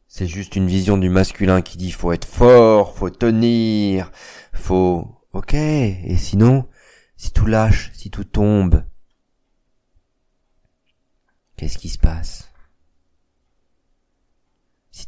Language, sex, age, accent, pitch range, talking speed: French, male, 40-59, French, 80-95 Hz, 110 wpm